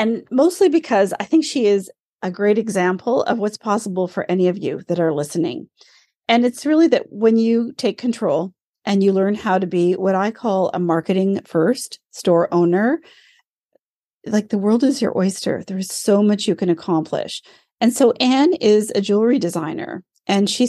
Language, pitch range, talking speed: English, 175-225 Hz, 185 wpm